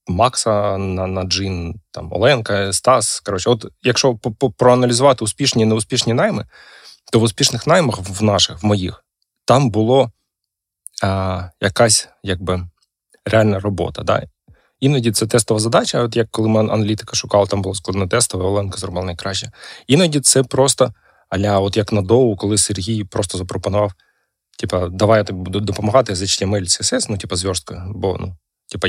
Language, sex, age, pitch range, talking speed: Ukrainian, male, 20-39, 95-120 Hz, 145 wpm